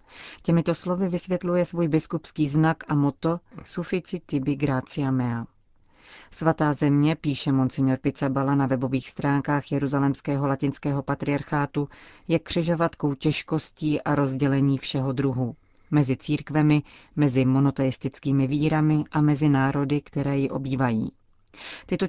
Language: Czech